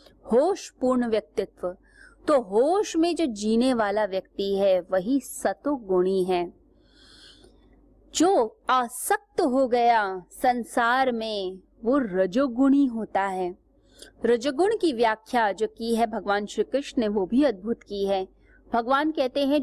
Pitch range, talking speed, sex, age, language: 210-280 Hz, 125 wpm, female, 30-49, Hindi